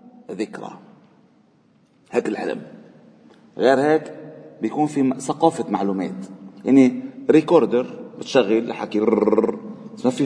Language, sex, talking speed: Arabic, male, 95 wpm